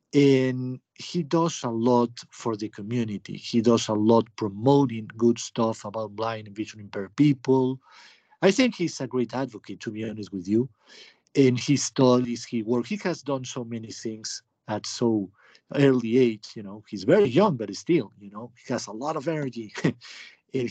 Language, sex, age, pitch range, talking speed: English, male, 50-69, 110-140 Hz, 185 wpm